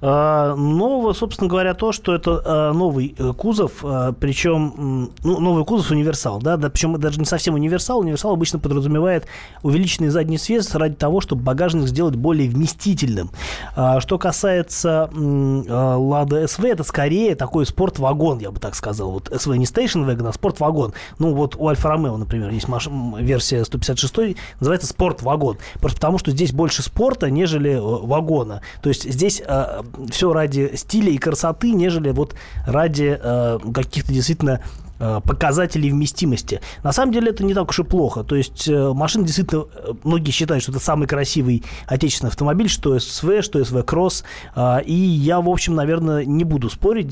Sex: male